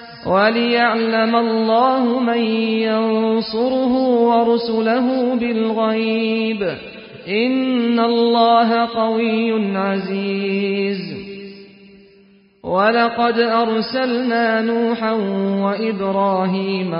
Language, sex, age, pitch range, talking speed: Persian, male, 40-59, 220-235 Hz, 50 wpm